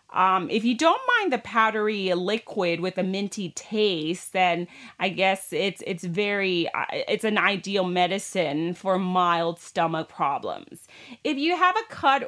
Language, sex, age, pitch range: Thai, female, 30-49, 185-235 Hz